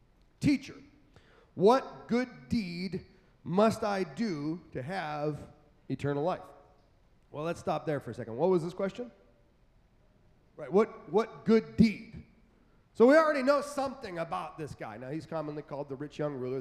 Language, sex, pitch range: English, male, 145-205 Hz